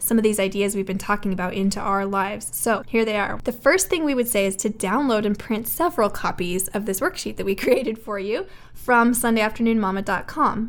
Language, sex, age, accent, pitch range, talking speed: English, female, 10-29, American, 200-245 Hz, 215 wpm